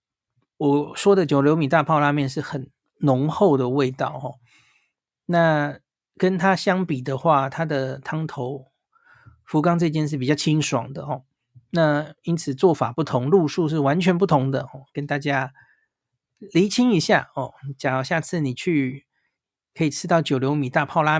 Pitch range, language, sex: 135-170 Hz, Chinese, male